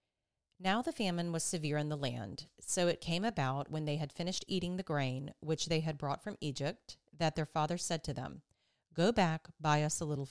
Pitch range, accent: 145-180 Hz, American